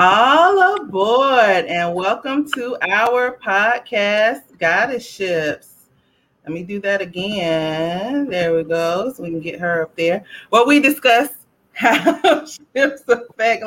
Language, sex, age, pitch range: English, female, 30-49, 185-245 Hz